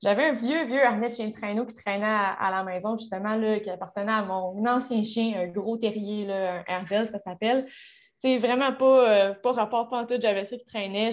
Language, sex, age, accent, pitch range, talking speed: French, female, 20-39, Canadian, 200-240 Hz, 230 wpm